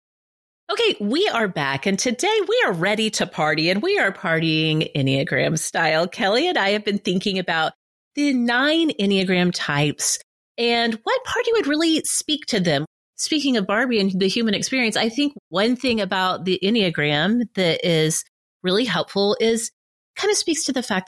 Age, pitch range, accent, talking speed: 30-49, 165-260 Hz, American, 175 wpm